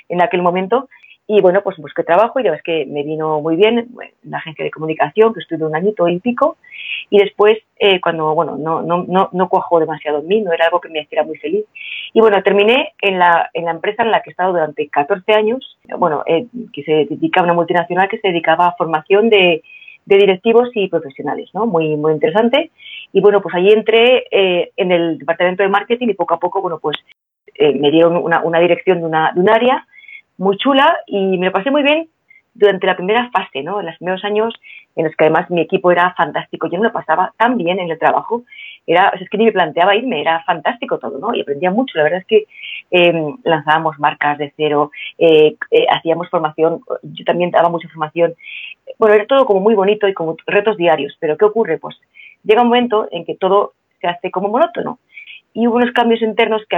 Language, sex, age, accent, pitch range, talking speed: English, female, 30-49, Spanish, 165-225 Hz, 225 wpm